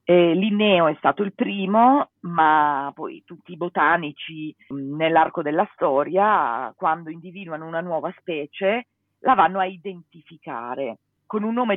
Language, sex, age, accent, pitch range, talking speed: Italian, female, 40-59, native, 160-210 Hz, 140 wpm